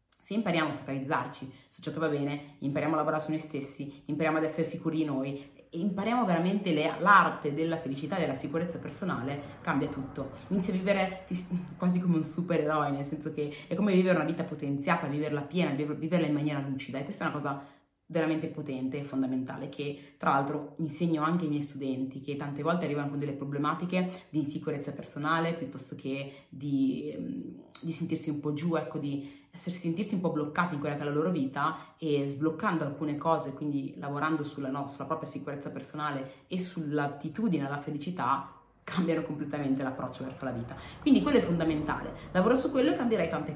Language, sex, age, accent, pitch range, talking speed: Italian, female, 30-49, native, 140-165 Hz, 185 wpm